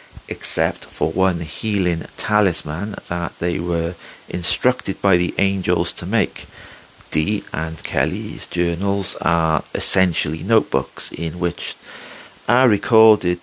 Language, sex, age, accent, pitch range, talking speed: English, male, 40-59, British, 85-100 Hz, 110 wpm